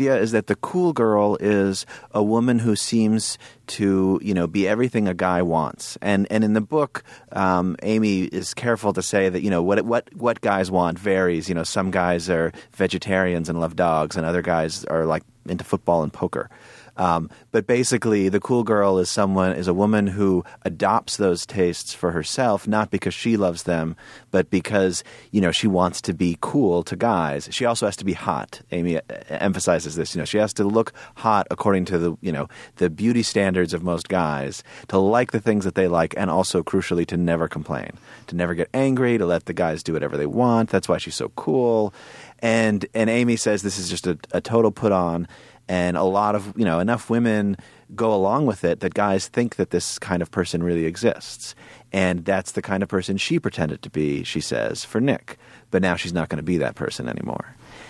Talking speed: 215 wpm